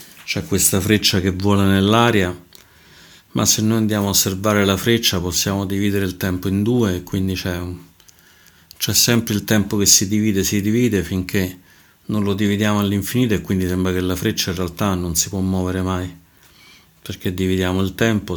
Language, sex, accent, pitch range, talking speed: Italian, male, native, 90-105 Hz, 175 wpm